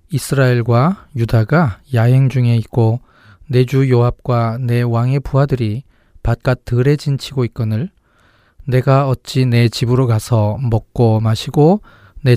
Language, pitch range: Korean, 110-140 Hz